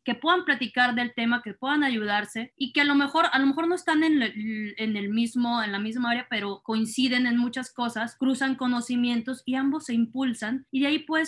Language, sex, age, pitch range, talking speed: Spanish, female, 20-39, 220-275 Hz, 225 wpm